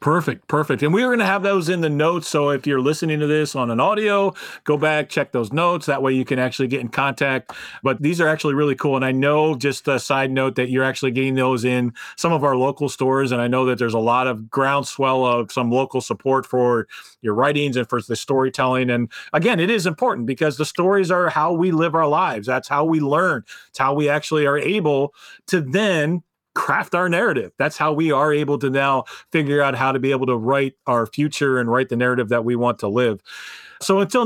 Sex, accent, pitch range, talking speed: male, American, 135-170 Hz, 235 wpm